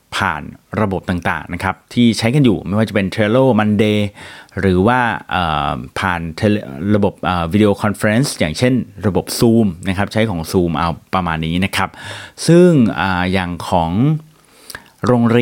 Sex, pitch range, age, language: male, 90-120 Hz, 30-49, Thai